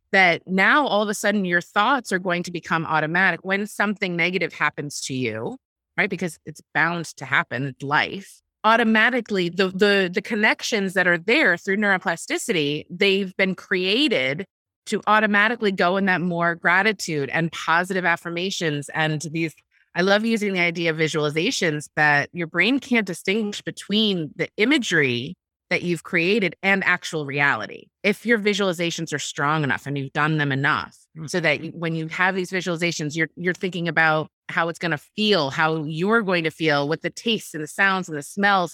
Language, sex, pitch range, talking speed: English, female, 160-205 Hz, 175 wpm